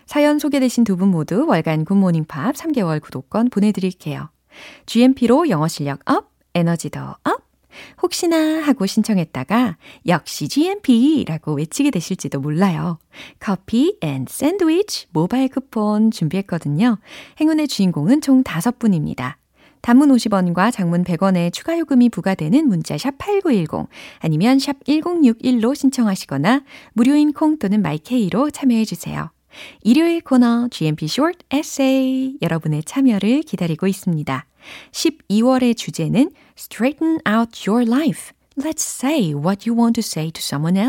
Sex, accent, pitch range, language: female, native, 175-275 Hz, Korean